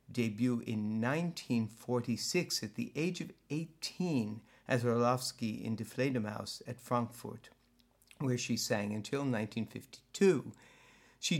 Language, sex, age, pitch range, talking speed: English, male, 60-79, 110-125 Hz, 110 wpm